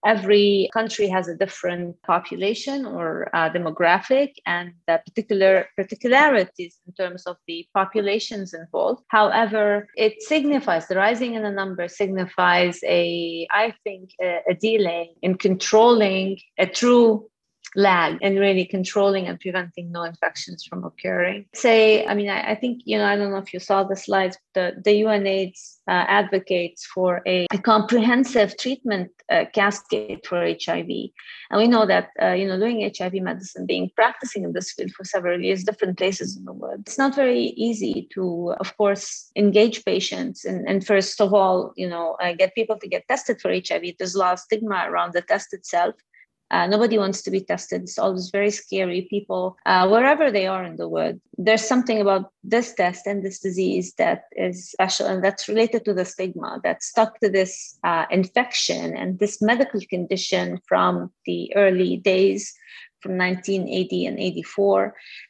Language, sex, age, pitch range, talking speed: English, female, 30-49, 180-220 Hz, 170 wpm